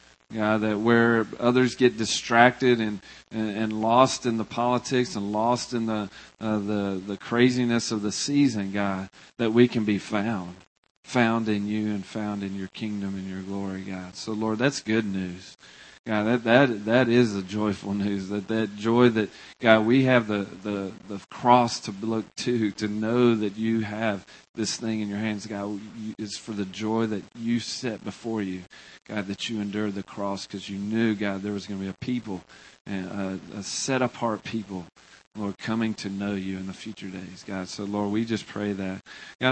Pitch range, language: 100-115 Hz, English